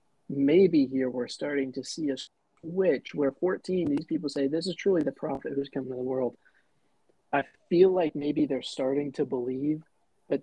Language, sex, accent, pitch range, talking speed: English, male, American, 125-140 Hz, 185 wpm